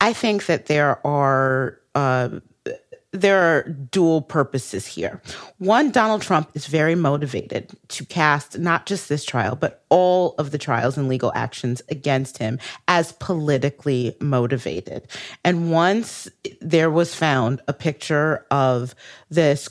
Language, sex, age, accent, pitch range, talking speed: English, female, 40-59, American, 130-160 Hz, 135 wpm